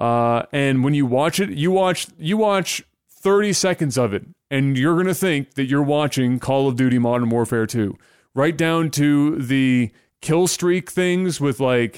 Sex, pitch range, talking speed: male, 130-170 Hz, 185 wpm